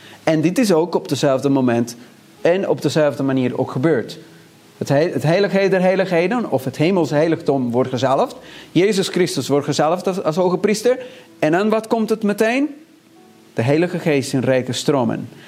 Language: Dutch